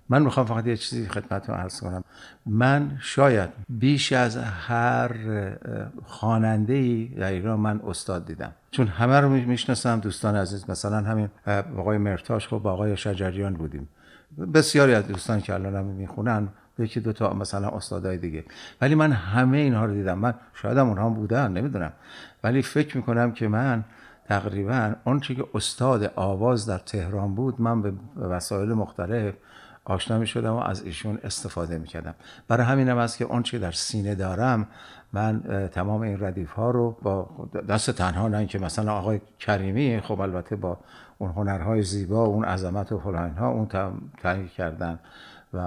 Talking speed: 155 wpm